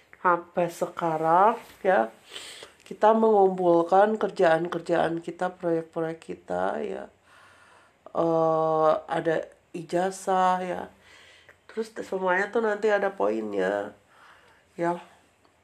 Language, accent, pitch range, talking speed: Indonesian, native, 175-195 Hz, 80 wpm